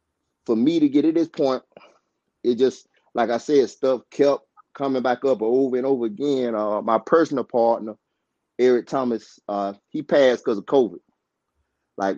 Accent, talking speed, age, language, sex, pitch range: American, 170 wpm, 30-49, English, male, 105-130 Hz